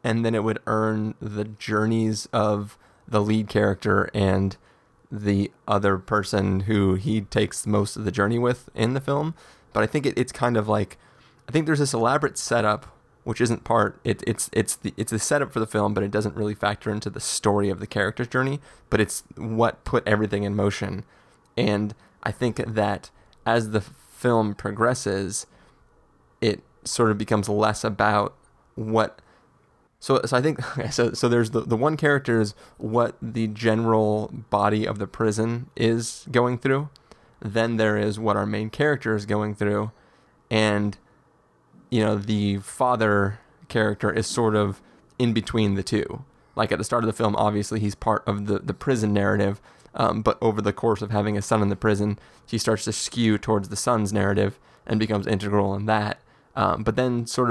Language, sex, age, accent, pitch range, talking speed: English, male, 20-39, American, 105-115 Hz, 180 wpm